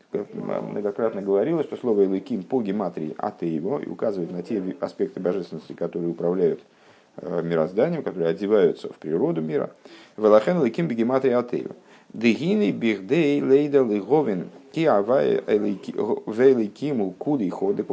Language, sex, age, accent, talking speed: Russian, male, 50-69, native, 90 wpm